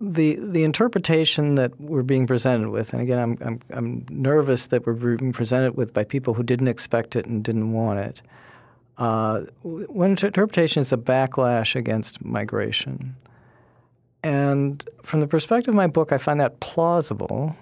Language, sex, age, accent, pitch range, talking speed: English, male, 40-59, American, 120-140 Hz, 165 wpm